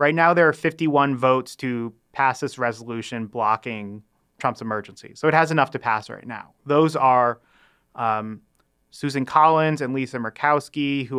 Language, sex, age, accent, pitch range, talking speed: English, male, 30-49, American, 115-140 Hz, 160 wpm